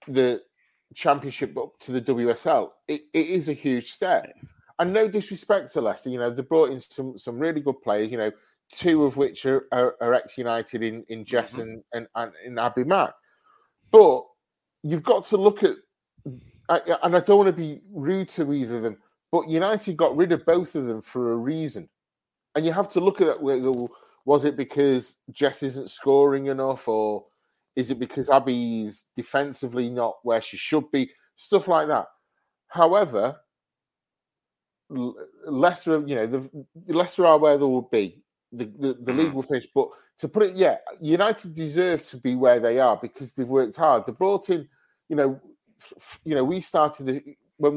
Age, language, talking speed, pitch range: 30-49, English, 180 wpm, 125-170 Hz